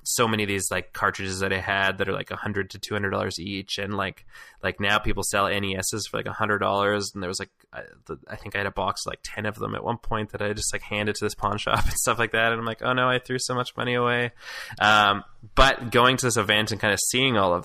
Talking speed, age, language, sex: 295 wpm, 20-39, English, male